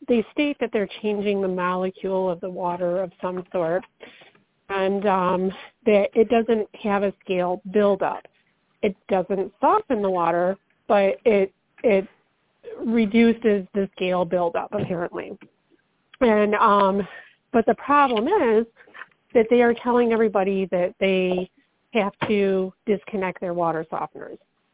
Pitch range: 180-215 Hz